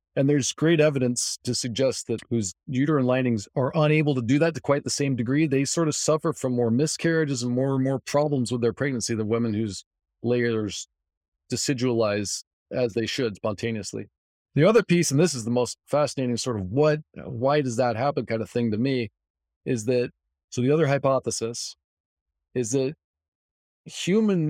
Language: English